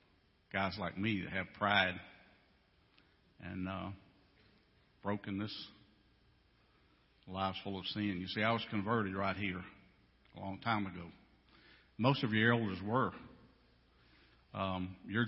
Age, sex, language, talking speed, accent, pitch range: 50-69, male, English, 120 wpm, American, 95-110 Hz